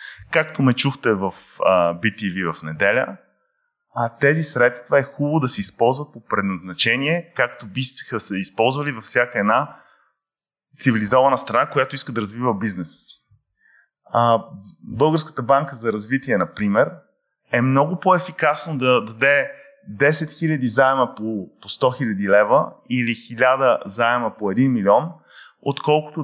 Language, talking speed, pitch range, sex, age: Bulgarian, 125 wpm, 115-155 Hz, male, 20-39